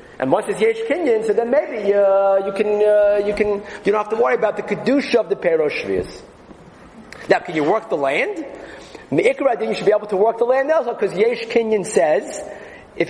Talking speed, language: 220 wpm, English